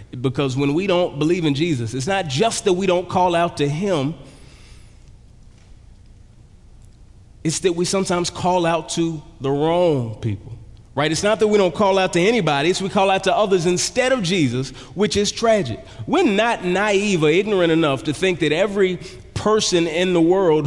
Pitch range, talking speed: 140-215 Hz, 185 wpm